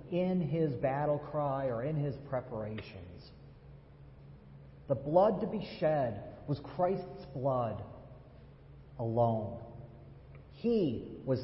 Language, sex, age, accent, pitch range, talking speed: English, male, 40-59, American, 120-145 Hz, 100 wpm